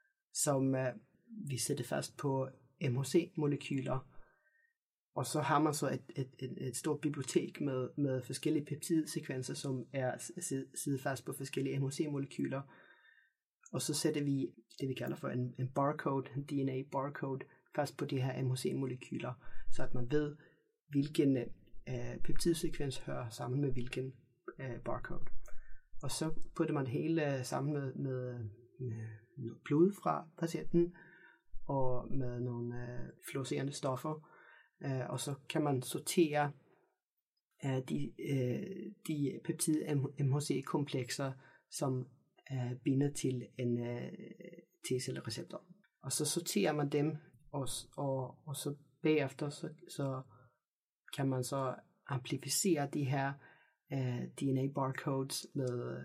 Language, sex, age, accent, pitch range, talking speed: Danish, male, 30-49, native, 130-155 Hz, 130 wpm